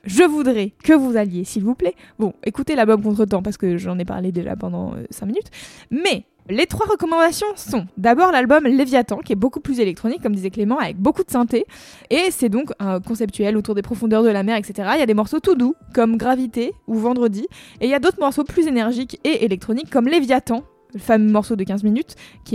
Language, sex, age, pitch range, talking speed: French, female, 20-39, 215-275 Hz, 225 wpm